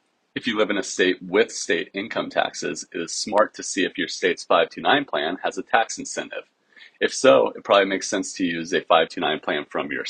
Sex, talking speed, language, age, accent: male, 220 wpm, English, 30-49, American